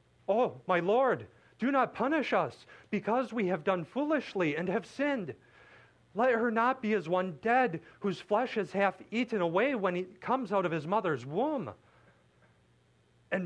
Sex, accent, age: male, American, 40-59